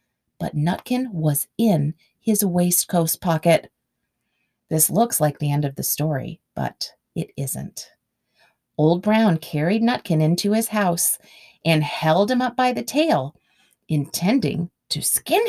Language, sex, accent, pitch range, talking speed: English, female, American, 165-255 Hz, 135 wpm